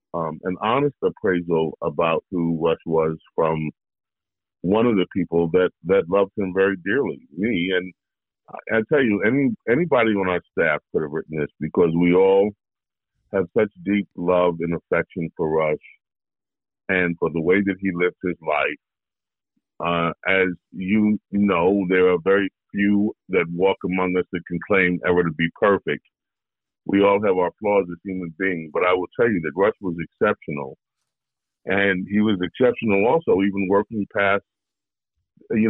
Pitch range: 85-100 Hz